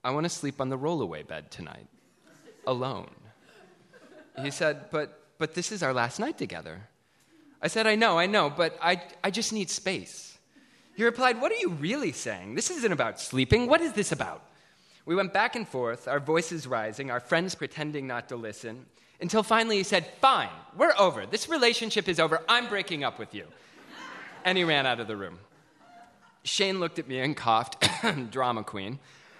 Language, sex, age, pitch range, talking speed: English, male, 20-39, 115-180 Hz, 190 wpm